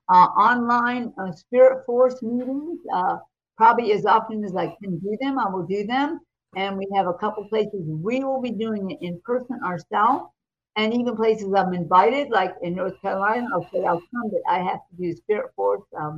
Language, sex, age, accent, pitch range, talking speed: English, female, 50-69, American, 195-255 Hz, 205 wpm